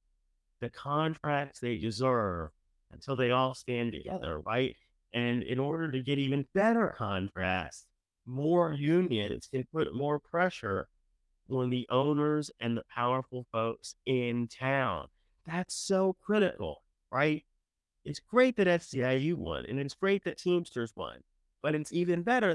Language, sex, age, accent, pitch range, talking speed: English, male, 30-49, American, 120-180 Hz, 140 wpm